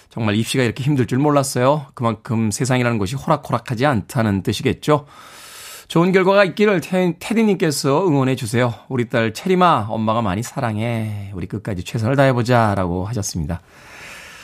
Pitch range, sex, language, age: 115-155 Hz, male, Korean, 20-39